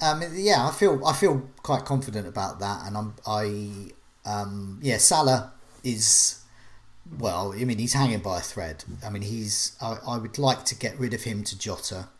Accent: British